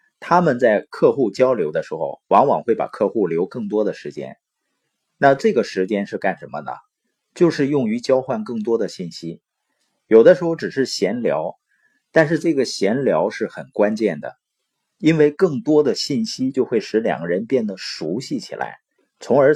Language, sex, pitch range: Chinese, male, 125-200 Hz